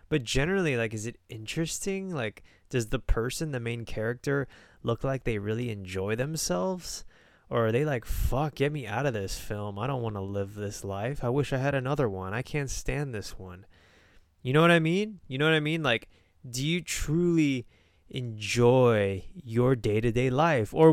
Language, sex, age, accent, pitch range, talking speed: English, male, 20-39, American, 100-135 Hz, 190 wpm